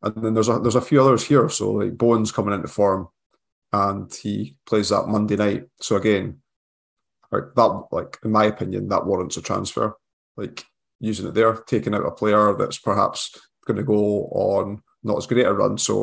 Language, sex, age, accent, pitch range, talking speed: English, male, 20-39, British, 100-115 Hz, 190 wpm